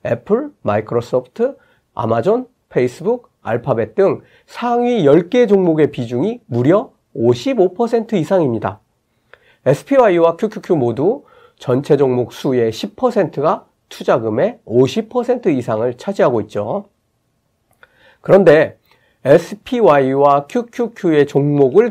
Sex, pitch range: male, 135-215 Hz